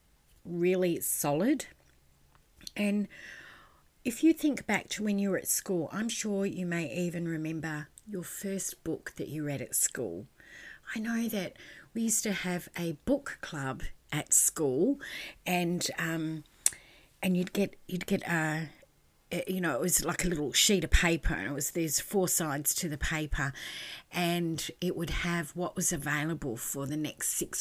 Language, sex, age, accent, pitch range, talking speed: English, female, 30-49, Australian, 155-190 Hz, 170 wpm